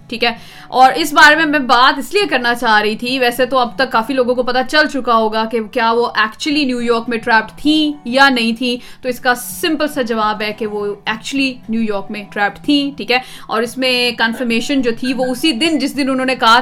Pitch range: 235-285 Hz